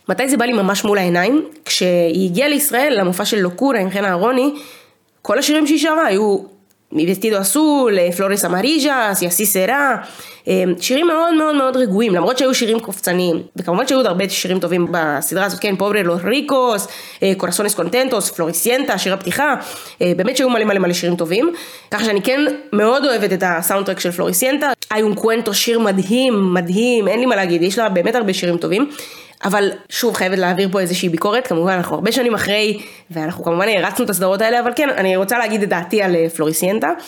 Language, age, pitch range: Hebrew, 20-39, 180-240 Hz